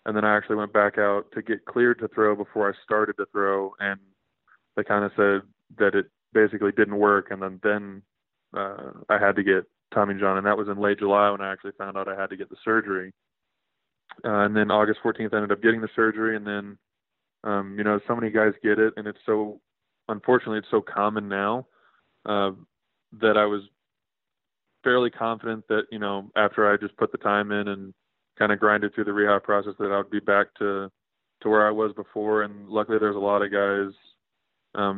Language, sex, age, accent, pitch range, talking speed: English, male, 20-39, American, 100-110 Hz, 215 wpm